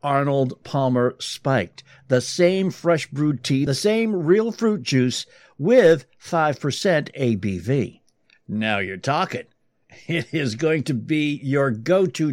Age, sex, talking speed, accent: 60-79, male, 120 wpm, American